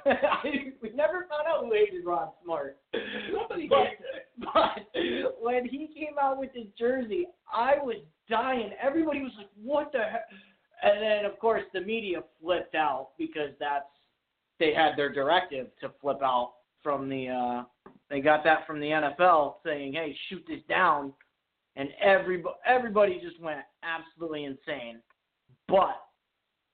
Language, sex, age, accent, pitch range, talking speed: English, male, 30-49, American, 160-225 Hz, 150 wpm